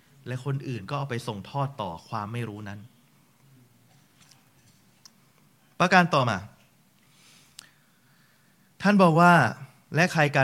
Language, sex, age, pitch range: Thai, male, 20-39, 120-145 Hz